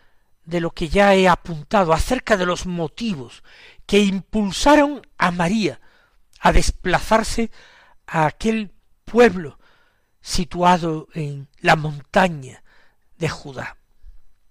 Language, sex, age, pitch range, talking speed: Spanish, male, 60-79, 130-190 Hz, 105 wpm